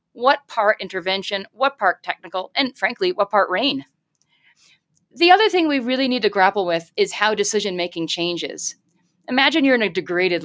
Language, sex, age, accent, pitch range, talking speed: English, female, 40-59, American, 185-230 Hz, 165 wpm